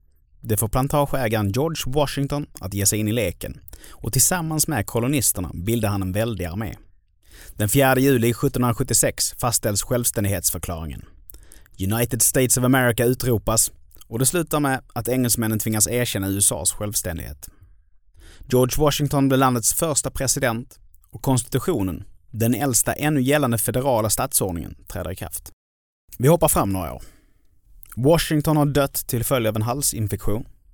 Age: 30-49